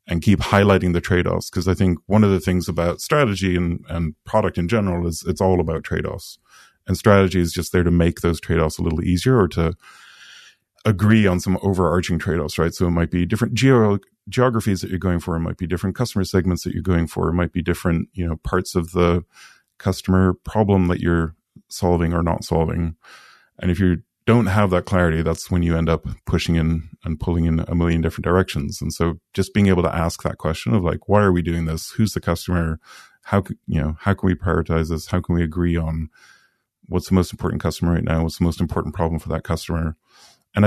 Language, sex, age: English, male, 30-49